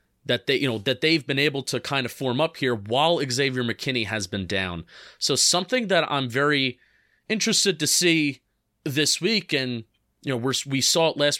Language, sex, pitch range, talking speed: English, male, 120-155 Hz, 200 wpm